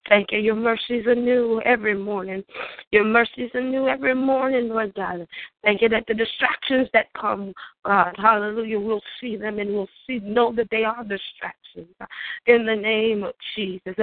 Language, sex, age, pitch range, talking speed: English, female, 20-39, 205-245 Hz, 170 wpm